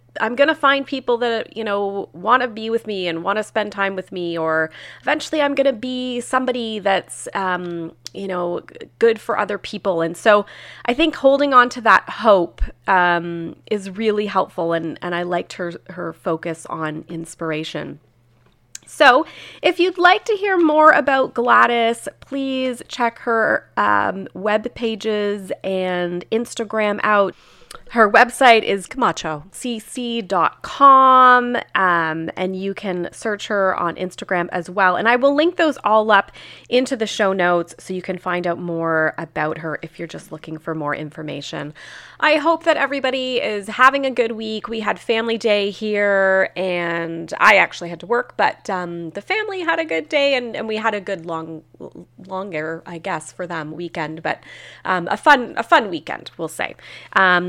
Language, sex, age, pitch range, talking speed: English, female, 30-49, 170-240 Hz, 170 wpm